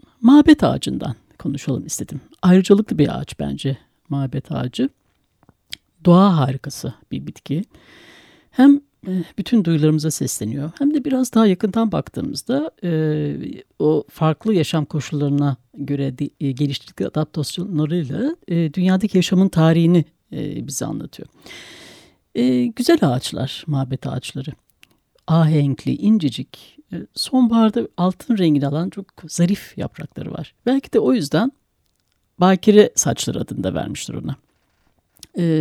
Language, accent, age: Turkish, native, 60-79